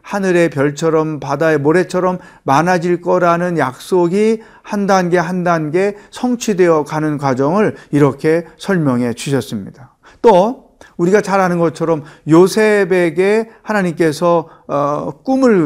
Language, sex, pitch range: Korean, male, 155-190 Hz